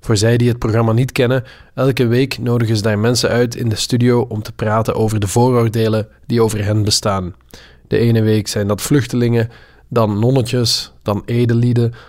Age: 20-39